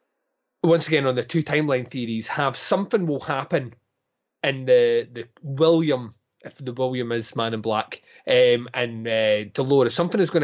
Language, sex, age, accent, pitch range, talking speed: English, male, 20-39, British, 115-170 Hz, 165 wpm